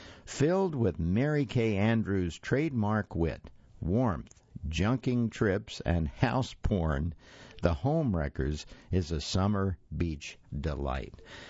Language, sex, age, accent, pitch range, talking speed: English, male, 60-79, American, 80-115 Hz, 110 wpm